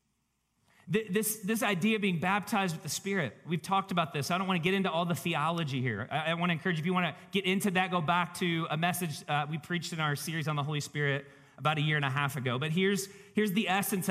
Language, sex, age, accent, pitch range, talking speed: English, male, 40-59, American, 160-225 Hz, 245 wpm